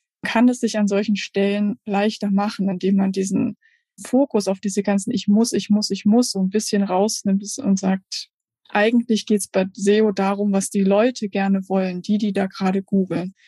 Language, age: German, 20-39